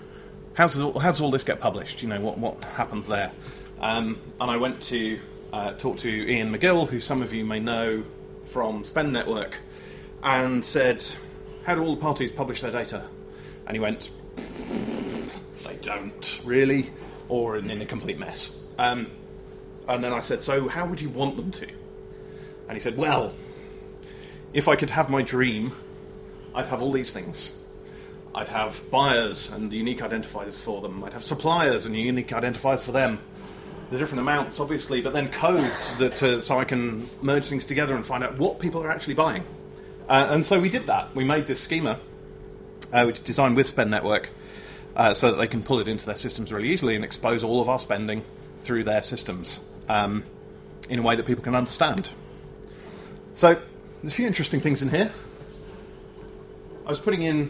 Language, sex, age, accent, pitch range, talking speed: English, male, 30-49, British, 120-150 Hz, 185 wpm